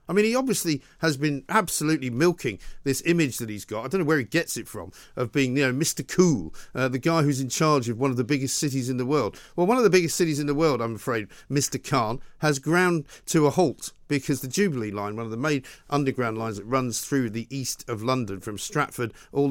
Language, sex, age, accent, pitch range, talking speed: English, male, 50-69, British, 120-150 Hz, 245 wpm